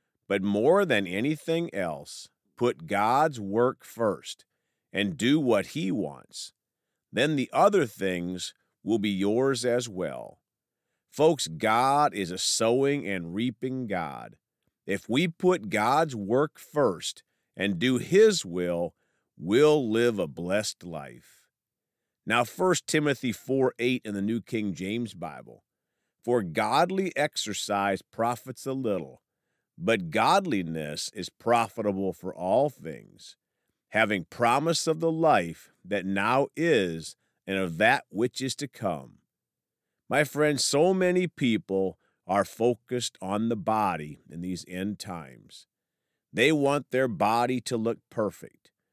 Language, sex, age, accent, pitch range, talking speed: English, male, 50-69, American, 95-135 Hz, 130 wpm